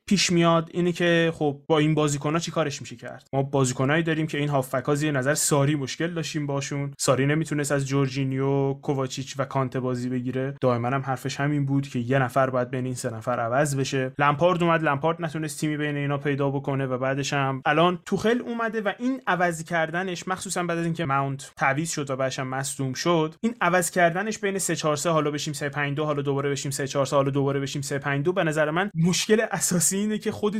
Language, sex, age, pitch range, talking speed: Persian, male, 20-39, 140-170 Hz, 205 wpm